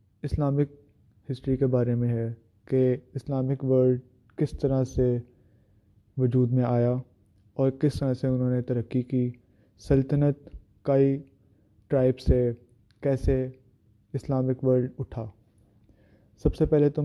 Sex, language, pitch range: male, Urdu, 105-130 Hz